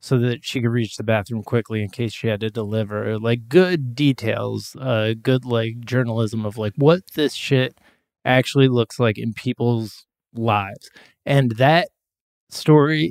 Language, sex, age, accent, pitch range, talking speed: English, male, 30-49, American, 115-140 Hz, 160 wpm